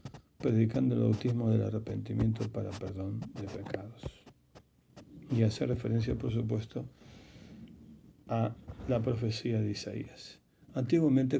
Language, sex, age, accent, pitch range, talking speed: Spanish, male, 50-69, Argentinian, 105-125 Hz, 110 wpm